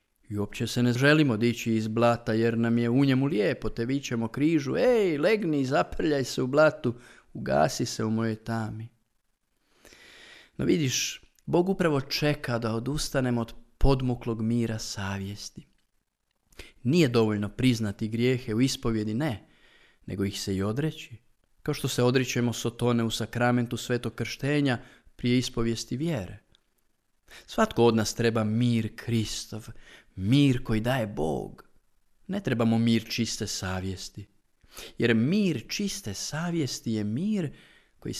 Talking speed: 135 wpm